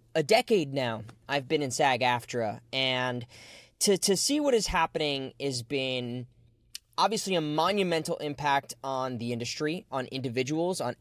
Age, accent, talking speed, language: 20-39, American, 140 wpm, English